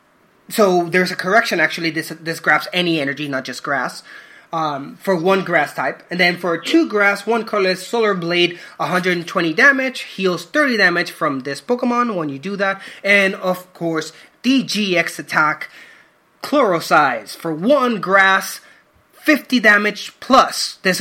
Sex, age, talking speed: male, 30-49, 150 wpm